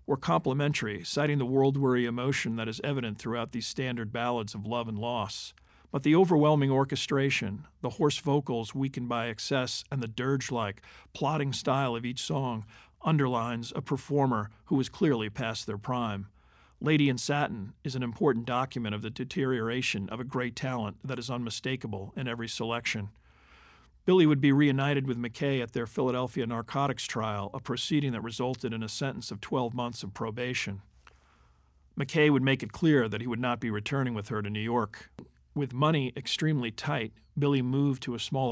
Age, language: 50-69, English